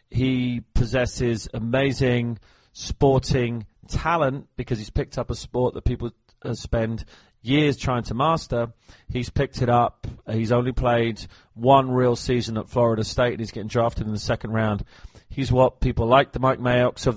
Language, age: English, 30-49